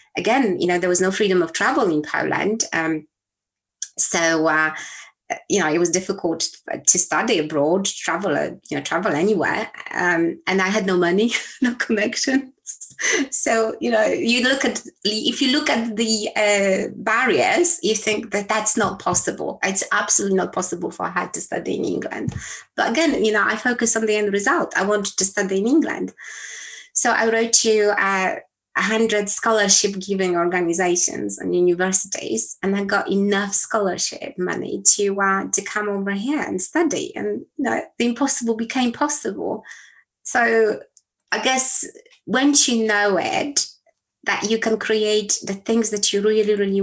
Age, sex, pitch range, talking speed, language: 20-39, female, 185-235 Hz, 165 wpm, English